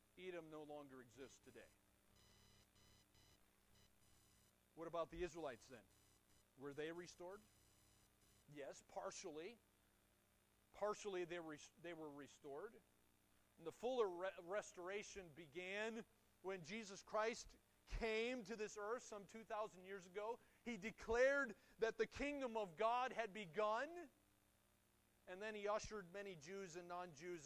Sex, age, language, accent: male, 40-59, English, American